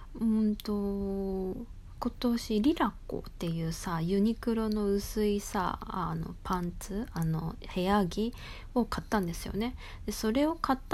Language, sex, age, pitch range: Japanese, female, 20-39, 175-230 Hz